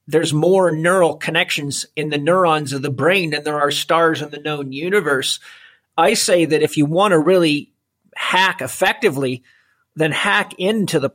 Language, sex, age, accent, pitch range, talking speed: English, male, 50-69, American, 140-165 Hz, 170 wpm